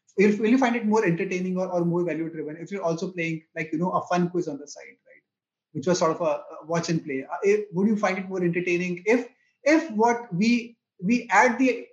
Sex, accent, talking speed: male, Indian, 240 wpm